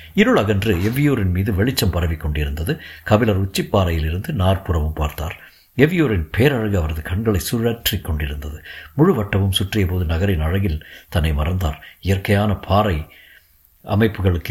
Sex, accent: male, native